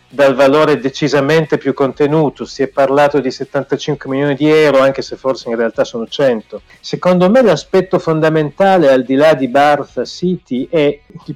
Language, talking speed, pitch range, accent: Italian, 170 wpm, 130-160 Hz, native